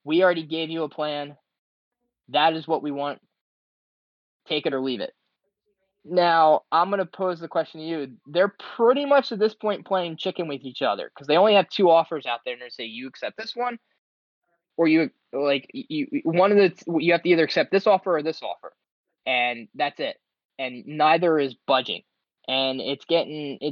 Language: English